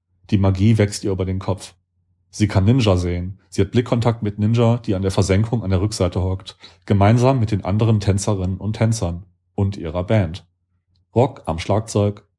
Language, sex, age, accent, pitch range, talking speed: German, male, 40-59, German, 90-110 Hz, 180 wpm